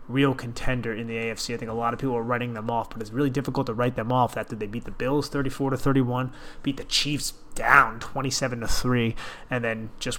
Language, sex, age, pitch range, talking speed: English, male, 20-39, 115-135 Hz, 240 wpm